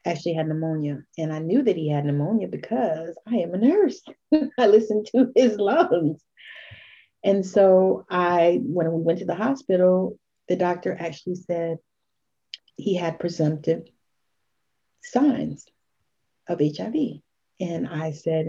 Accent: American